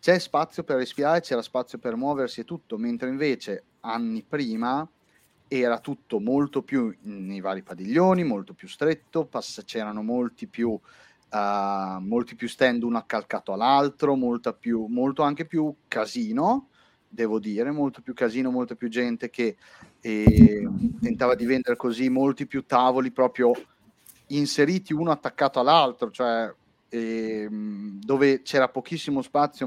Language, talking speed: Italian, 140 wpm